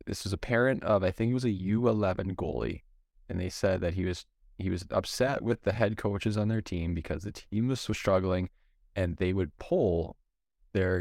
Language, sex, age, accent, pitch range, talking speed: English, male, 20-39, American, 90-110 Hz, 215 wpm